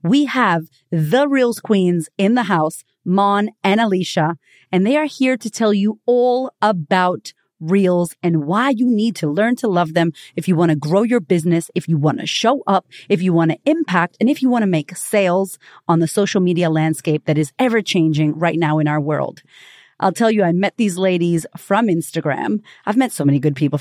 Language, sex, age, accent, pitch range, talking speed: English, female, 30-49, American, 170-235 Hz, 210 wpm